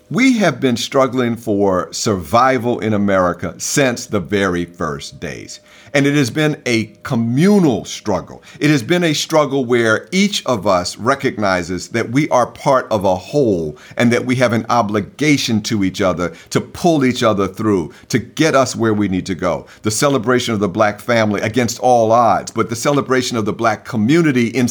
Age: 50-69